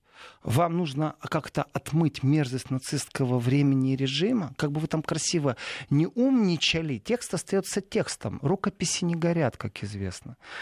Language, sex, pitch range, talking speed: Russian, male, 135-200 Hz, 135 wpm